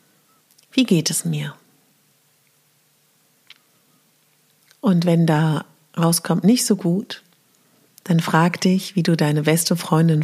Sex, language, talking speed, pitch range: female, German, 110 wpm, 155-195 Hz